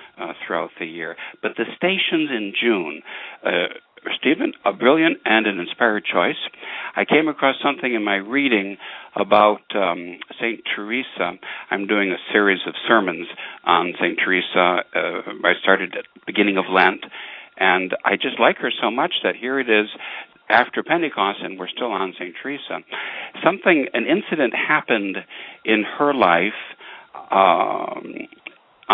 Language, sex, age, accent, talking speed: English, male, 60-79, American, 150 wpm